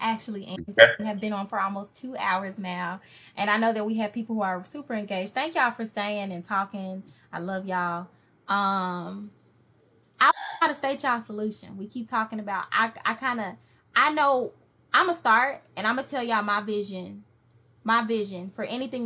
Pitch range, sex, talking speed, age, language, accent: 180-225 Hz, female, 190 wpm, 20-39, English, American